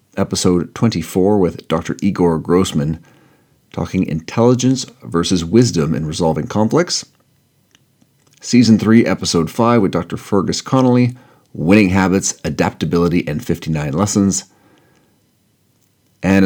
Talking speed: 100 wpm